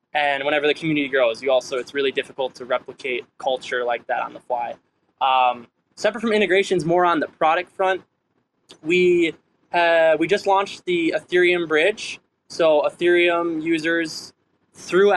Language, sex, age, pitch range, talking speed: English, male, 20-39, 150-195 Hz, 155 wpm